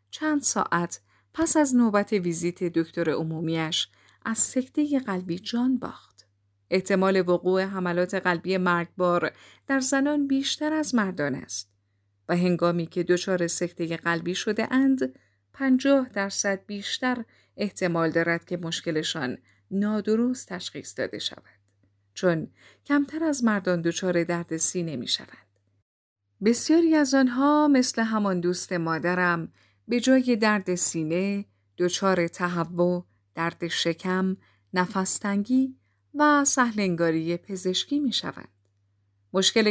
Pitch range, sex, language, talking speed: 165-225 Hz, female, Persian, 105 wpm